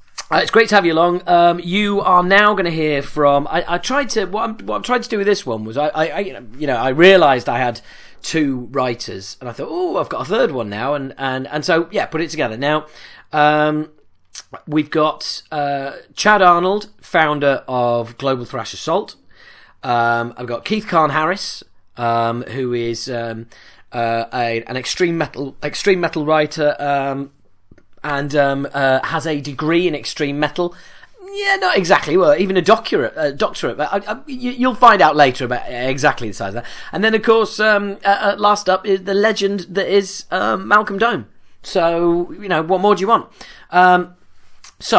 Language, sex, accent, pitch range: English, male, British, 120-180 Hz